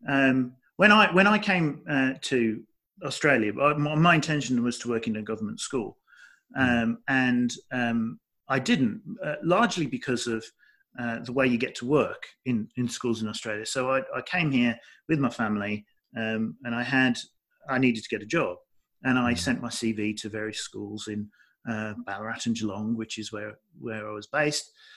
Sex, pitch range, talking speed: male, 115-140 Hz, 185 wpm